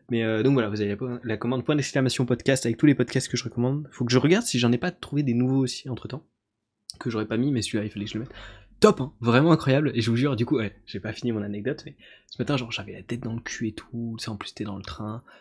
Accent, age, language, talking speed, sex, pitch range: French, 20-39, French, 310 wpm, male, 105-130 Hz